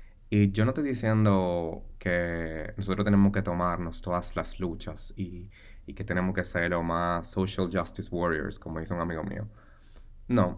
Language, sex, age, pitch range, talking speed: Spanish, male, 20-39, 85-105 Hz, 170 wpm